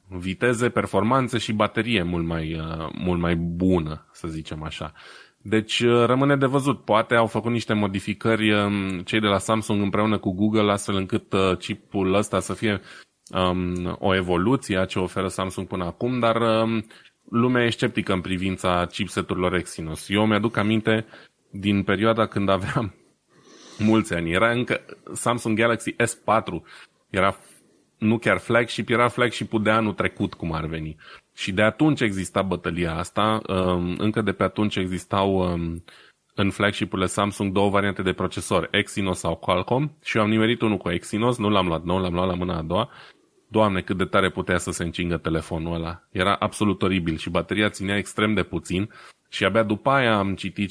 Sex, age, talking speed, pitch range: male, 20-39, 165 wpm, 90-110 Hz